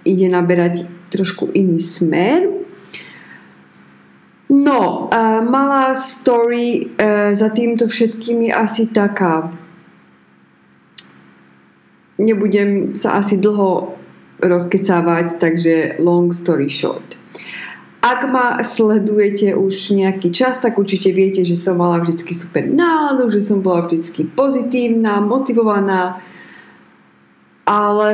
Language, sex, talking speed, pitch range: Slovak, female, 100 wpm, 175-215 Hz